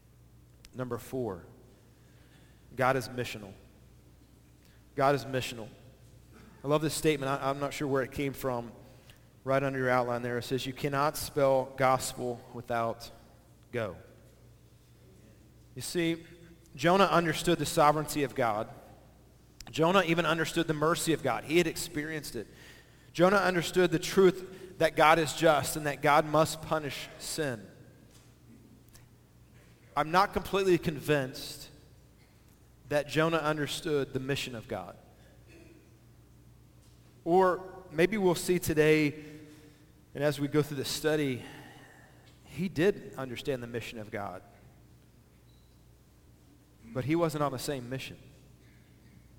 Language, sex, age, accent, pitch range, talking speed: English, male, 30-49, American, 120-155 Hz, 125 wpm